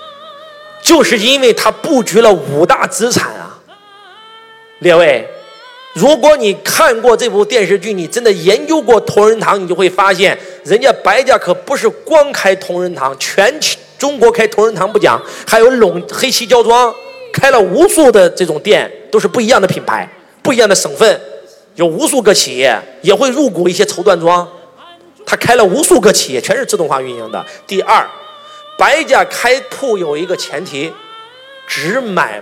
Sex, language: male, Chinese